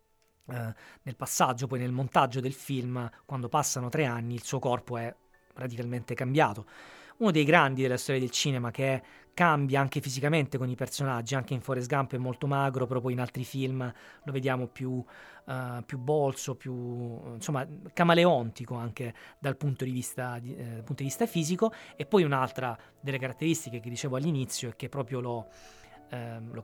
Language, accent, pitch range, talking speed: Italian, native, 125-150 Hz, 175 wpm